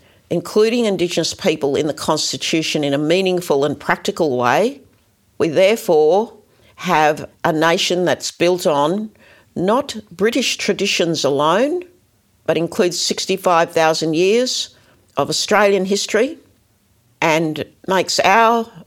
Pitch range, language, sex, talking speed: 150-190 Hz, English, female, 110 wpm